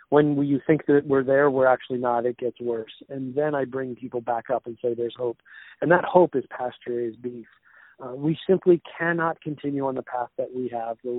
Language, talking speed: English, 225 wpm